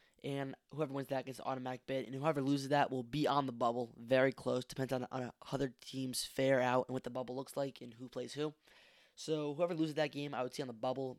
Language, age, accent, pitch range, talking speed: English, 10-29, American, 125-145 Hz, 250 wpm